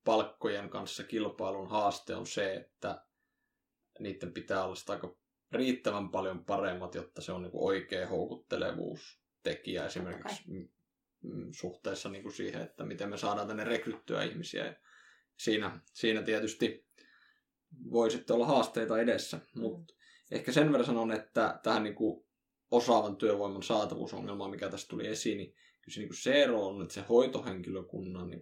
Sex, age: male, 20-39